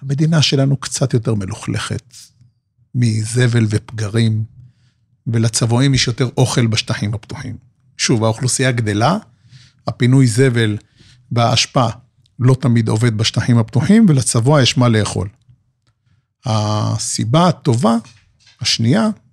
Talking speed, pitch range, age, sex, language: 95 wpm, 115-135 Hz, 50-69, male, Hebrew